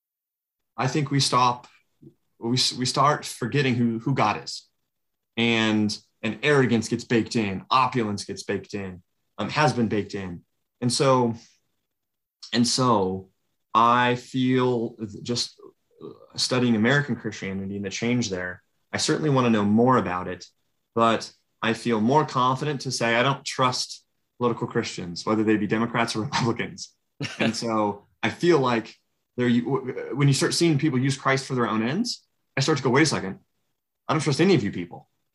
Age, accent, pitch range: 20-39, American, 110-130 Hz